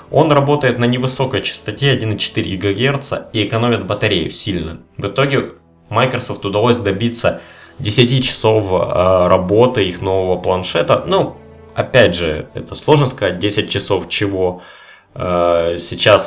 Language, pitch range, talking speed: Russian, 90-120 Hz, 120 wpm